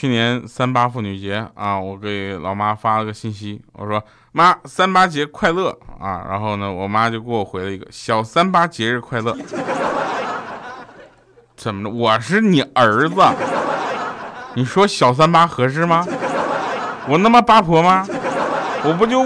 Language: Chinese